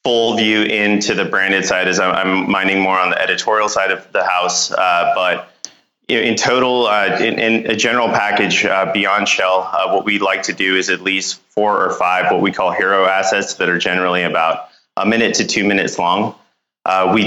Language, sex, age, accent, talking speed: English, male, 30-49, American, 210 wpm